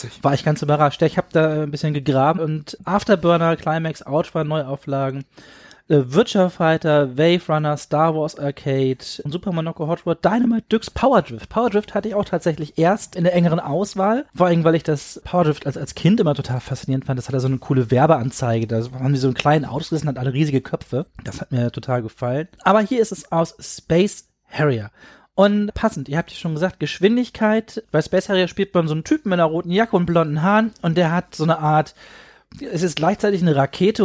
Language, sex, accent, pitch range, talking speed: German, male, German, 140-180 Hz, 205 wpm